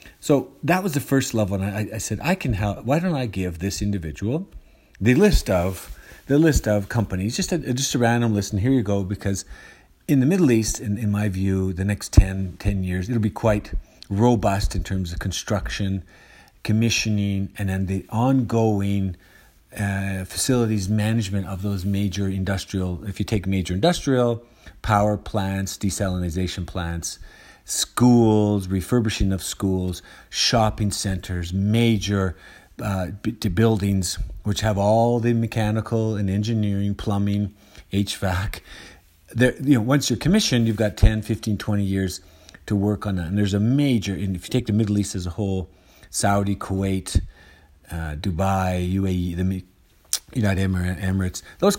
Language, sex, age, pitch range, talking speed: English, male, 40-59, 95-110 Hz, 160 wpm